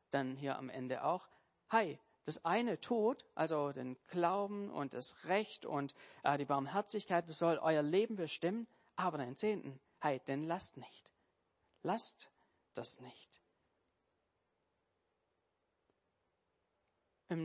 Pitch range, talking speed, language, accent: 135-170 Hz, 120 wpm, German, German